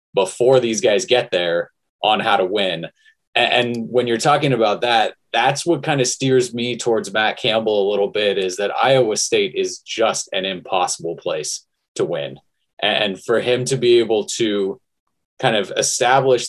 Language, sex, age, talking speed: English, male, 20-39, 175 wpm